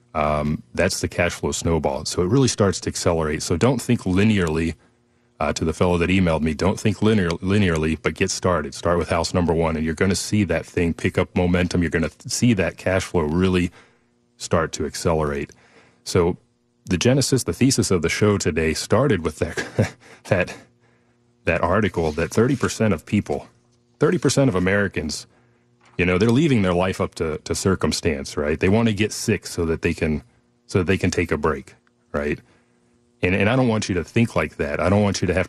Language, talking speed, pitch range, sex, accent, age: English, 205 wpm, 85-115 Hz, male, American, 30-49